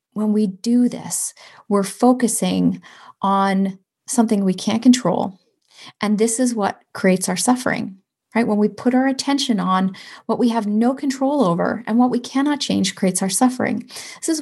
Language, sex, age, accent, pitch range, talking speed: English, female, 30-49, American, 200-245 Hz, 170 wpm